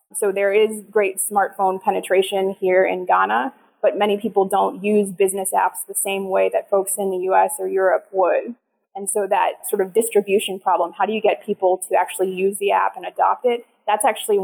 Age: 20-39